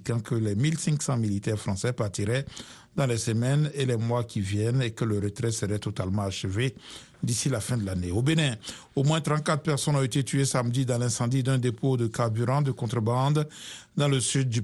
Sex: male